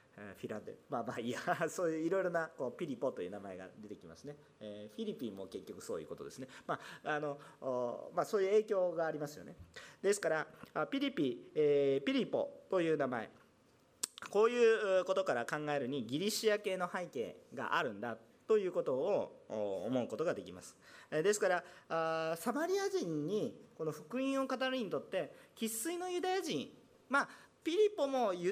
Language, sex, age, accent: Japanese, male, 40-59, native